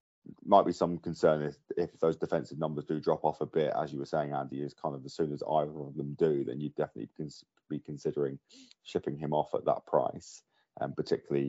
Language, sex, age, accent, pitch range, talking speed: English, male, 20-39, British, 75-95 Hz, 240 wpm